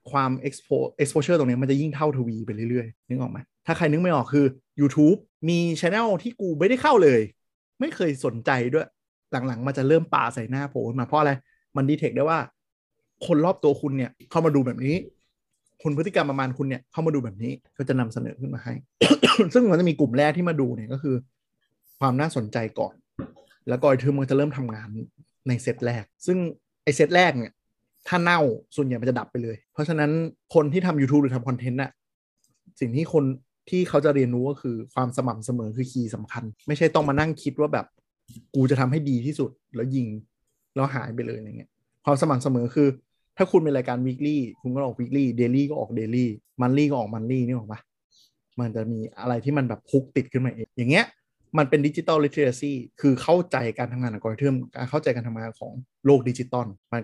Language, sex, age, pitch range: Thai, male, 20-39, 120-150 Hz